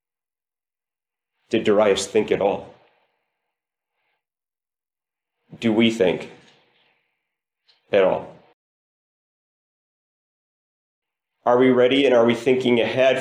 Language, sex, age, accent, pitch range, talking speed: English, male, 40-59, American, 130-200 Hz, 80 wpm